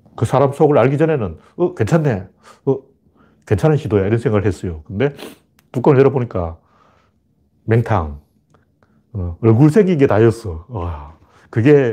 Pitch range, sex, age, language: 95-140 Hz, male, 40-59, Korean